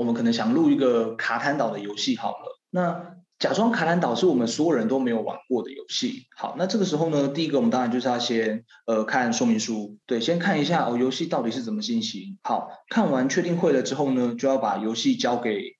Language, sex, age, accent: Chinese, male, 20-39, native